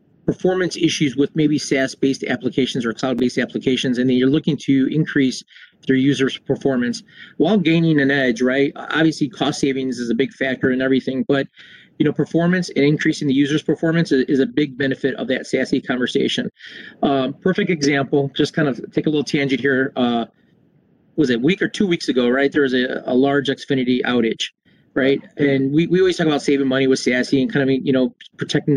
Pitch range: 130-155 Hz